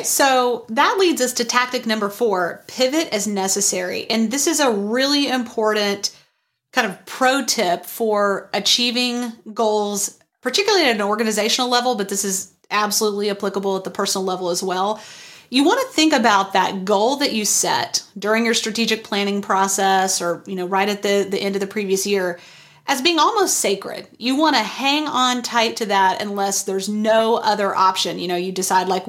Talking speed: 185 wpm